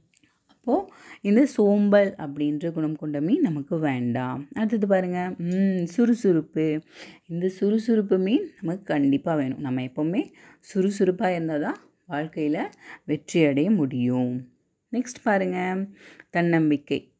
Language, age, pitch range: Tamil, 30-49, 150-205 Hz